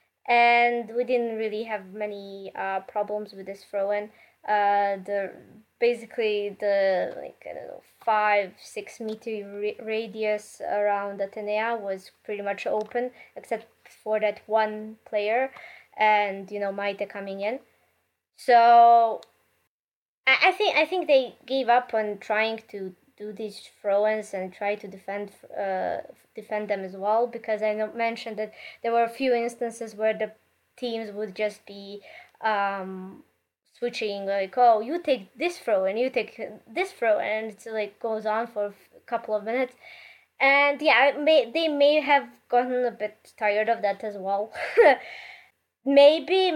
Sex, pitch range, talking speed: female, 210-245 Hz, 150 wpm